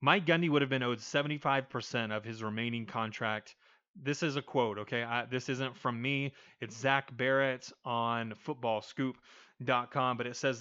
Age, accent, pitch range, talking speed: 30-49, American, 115-145 Hz, 165 wpm